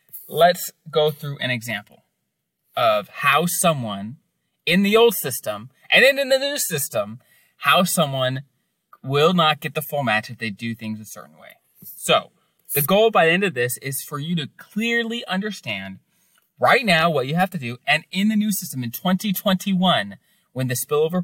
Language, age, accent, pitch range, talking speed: English, 30-49, American, 130-200 Hz, 180 wpm